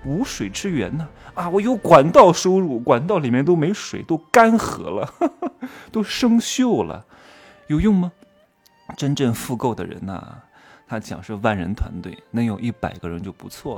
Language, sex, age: Chinese, male, 20-39